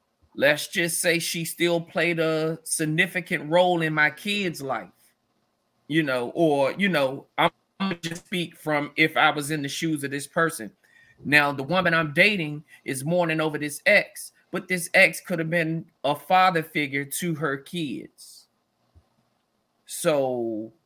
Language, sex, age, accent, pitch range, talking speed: English, male, 30-49, American, 150-185 Hz, 160 wpm